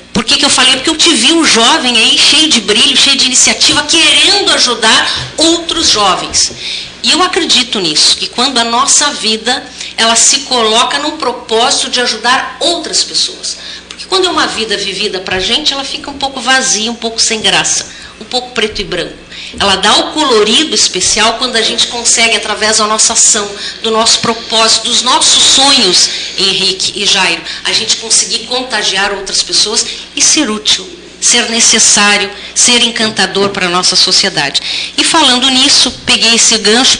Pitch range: 210-265 Hz